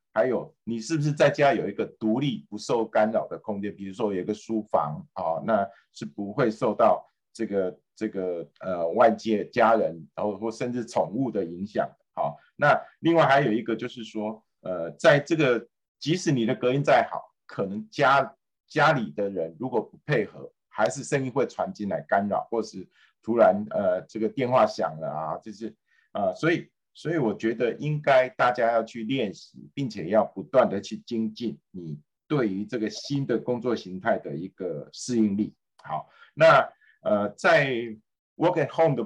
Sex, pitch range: male, 105-135 Hz